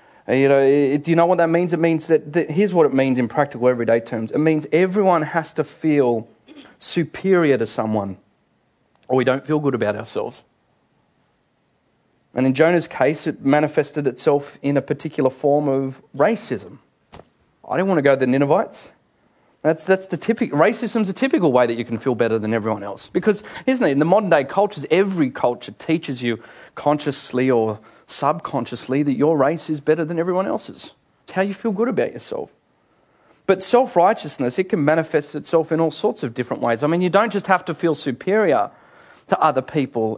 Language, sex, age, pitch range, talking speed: English, male, 30-49, 130-175 Hz, 190 wpm